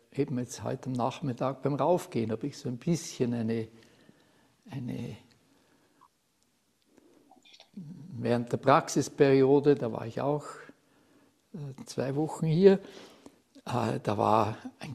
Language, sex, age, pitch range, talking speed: German, male, 60-79, 115-160 Hz, 110 wpm